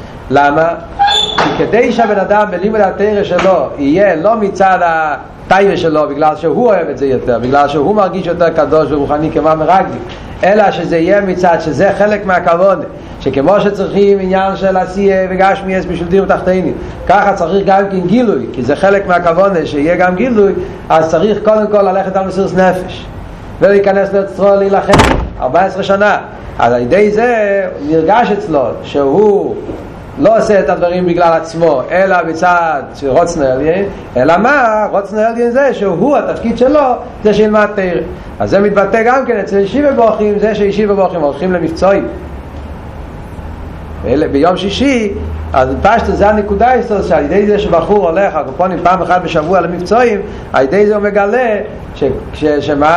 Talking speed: 145 wpm